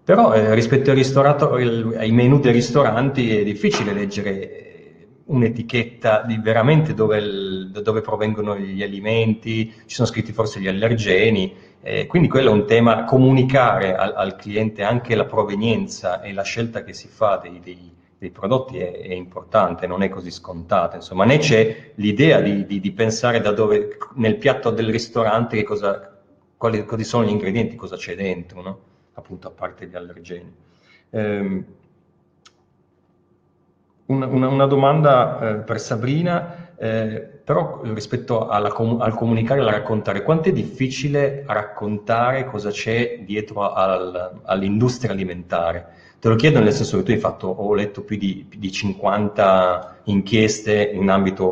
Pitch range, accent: 100-120 Hz, native